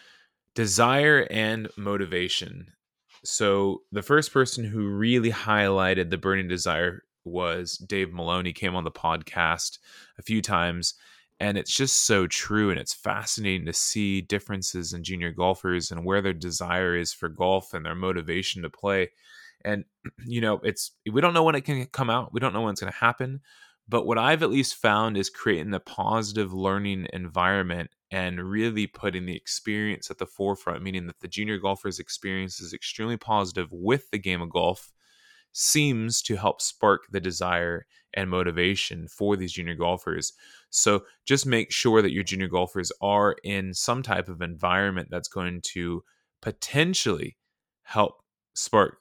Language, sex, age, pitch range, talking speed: English, male, 20-39, 90-110 Hz, 165 wpm